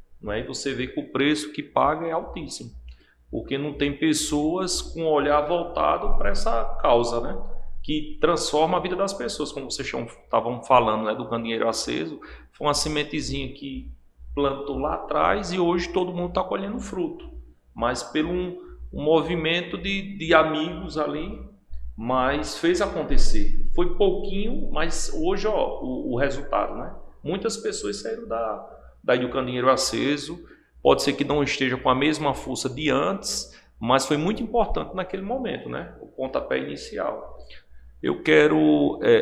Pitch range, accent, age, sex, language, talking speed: 115-160 Hz, Brazilian, 40-59, male, Portuguese, 155 wpm